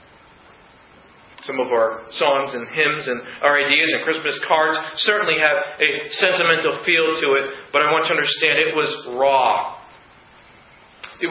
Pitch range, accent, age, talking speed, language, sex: 150-220 Hz, American, 40-59, 155 wpm, English, male